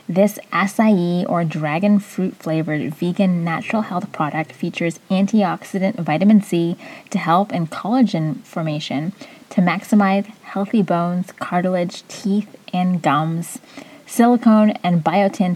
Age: 20-39